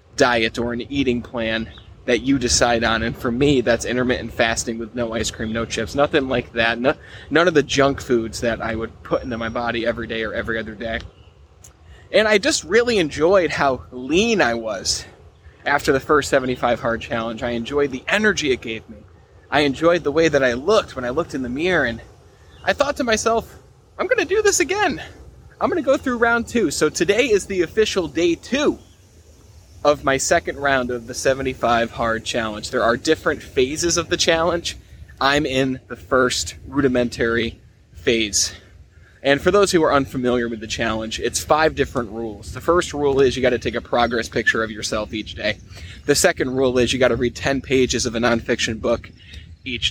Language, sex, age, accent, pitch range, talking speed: English, male, 20-39, American, 110-145 Hz, 195 wpm